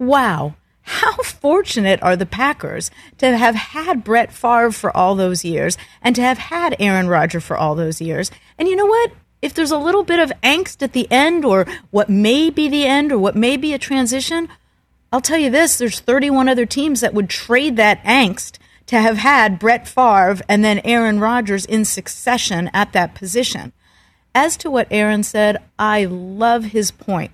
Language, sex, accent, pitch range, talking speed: English, female, American, 195-275 Hz, 190 wpm